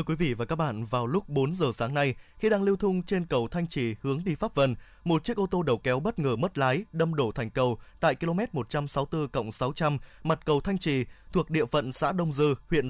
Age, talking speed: 20-39, 235 wpm